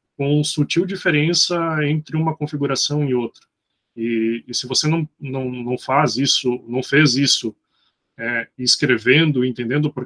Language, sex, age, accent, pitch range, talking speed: Portuguese, male, 20-39, Brazilian, 120-145 Hz, 145 wpm